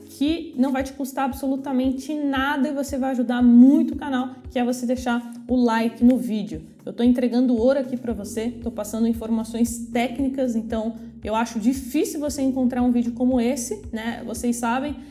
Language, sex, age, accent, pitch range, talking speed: Portuguese, female, 20-39, Brazilian, 230-260 Hz, 185 wpm